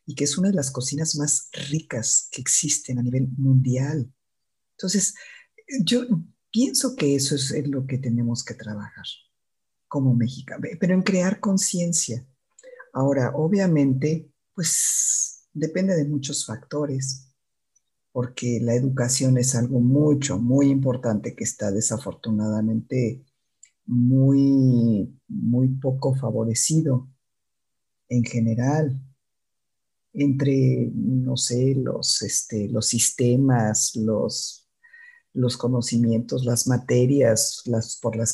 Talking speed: 105 wpm